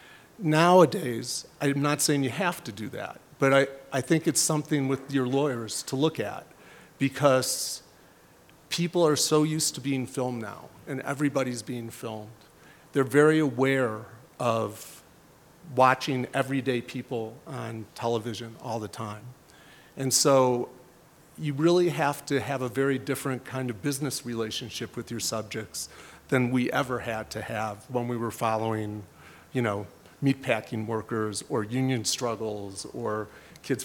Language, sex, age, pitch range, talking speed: English, male, 40-59, 120-145 Hz, 145 wpm